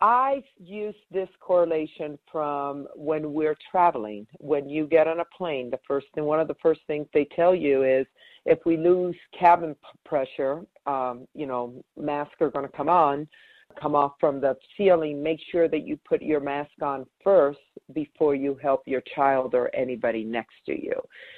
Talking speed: 185 wpm